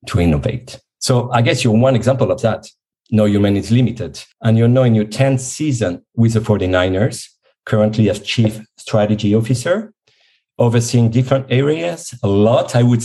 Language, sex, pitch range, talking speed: English, male, 105-125 Hz, 165 wpm